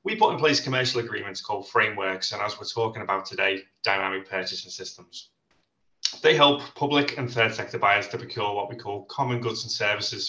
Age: 20-39